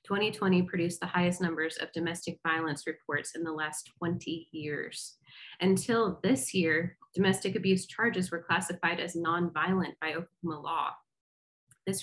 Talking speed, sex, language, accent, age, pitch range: 140 wpm, female, English, American, 30-49, 160-185 Hz